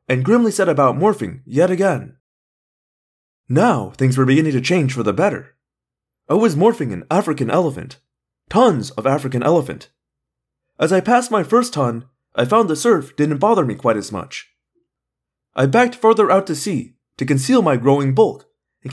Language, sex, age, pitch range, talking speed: English, male, 30-49, 130-215 Hz, 170 wpm